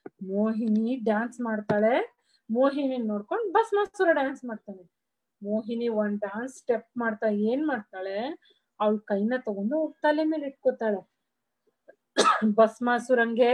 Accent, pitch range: native, 220-290 Hz